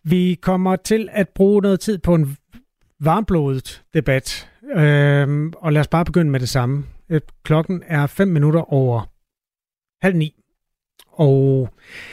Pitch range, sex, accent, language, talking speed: 135-170 Hz, male, native, Danish, 135 wpm